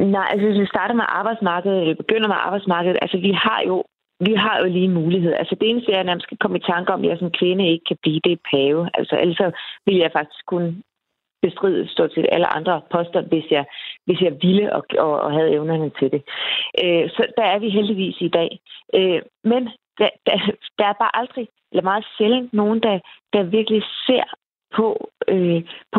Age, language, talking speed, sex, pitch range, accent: 30-49, Danish, 200 wpm, female, 180-225 Hz, native